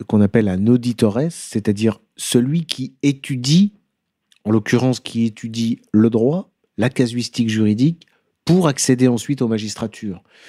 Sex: male